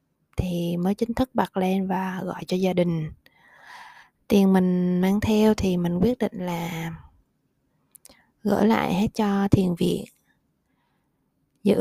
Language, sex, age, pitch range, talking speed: Vietnamese, female, 20-39, 185-225 Hz, 135 wpm